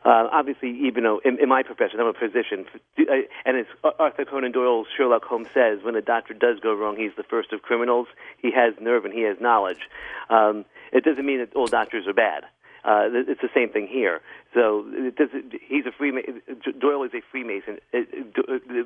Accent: American